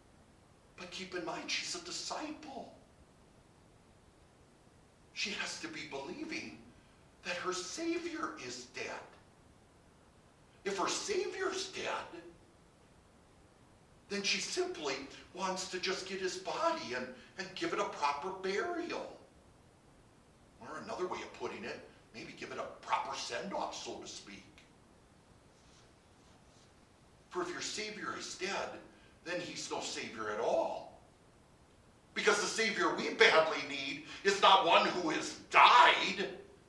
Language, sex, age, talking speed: English, male, 50-69, 125 wpm